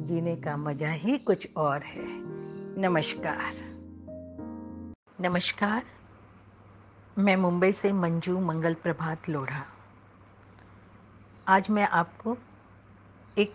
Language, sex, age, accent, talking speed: Hindi, female, 50-69, native, 90 wpm